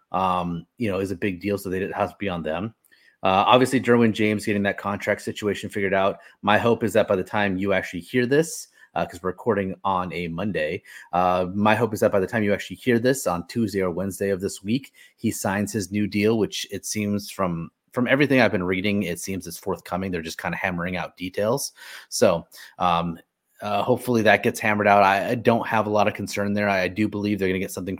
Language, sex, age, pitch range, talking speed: English, male, 30-49, 95-115 Hz, 240 wpm